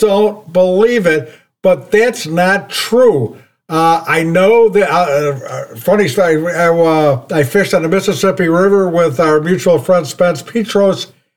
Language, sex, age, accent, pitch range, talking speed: English, male, 60-79, American, 170-215 Hz, 155 wpm